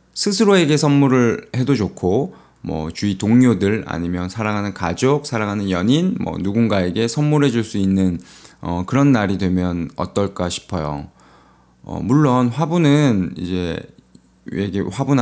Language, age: Korean, 20-39